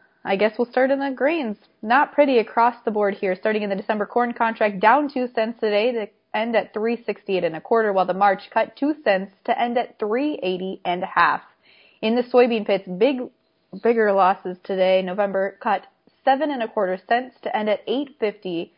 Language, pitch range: English, 195-245 Hz